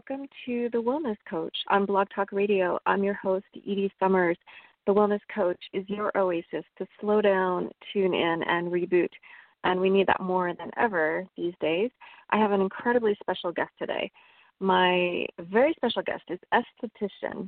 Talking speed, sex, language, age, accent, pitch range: 170 wpm, female, English, 30-49, American, 180-210 Hz